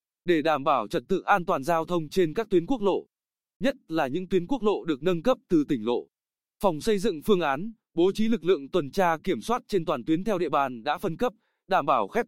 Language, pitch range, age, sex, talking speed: Vietnamese, 165-215 Hz, 20-39, male, 250 wpm